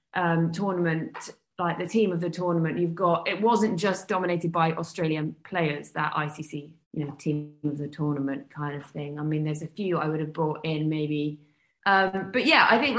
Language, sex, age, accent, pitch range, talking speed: English, female, 20-39, British, 155-195 Hz, 200 wpm